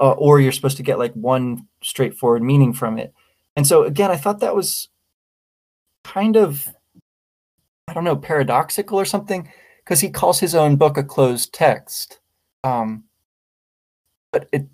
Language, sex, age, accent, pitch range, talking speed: English, male, 20-39, American, 115-145 Hz, 160 wpm